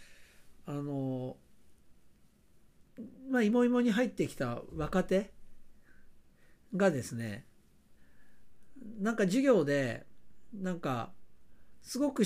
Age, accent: 60-79, native